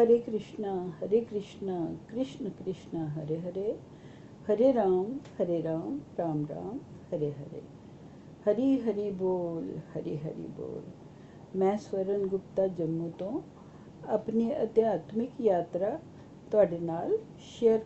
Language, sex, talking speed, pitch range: Punjabi, female, 110 wpm, 170-230 Hz